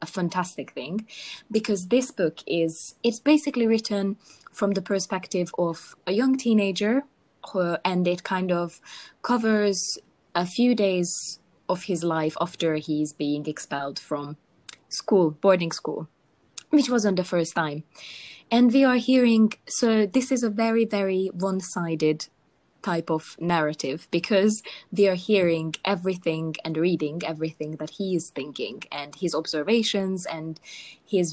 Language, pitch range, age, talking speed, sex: English, 160-210 Hz, 20-39, 140 wpm, female